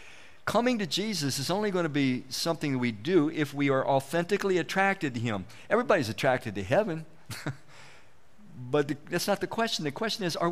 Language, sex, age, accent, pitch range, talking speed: English, male, 50-69, American, 125-180 Hz, 175 wpm